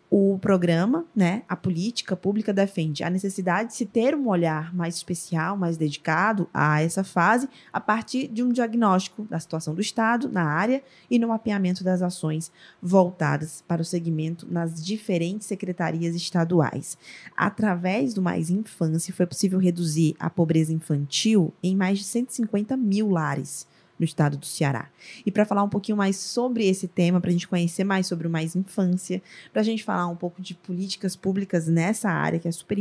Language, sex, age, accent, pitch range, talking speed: Portuguese, female, 20-39, Brazilian, 165-205 Hz, 175 wpm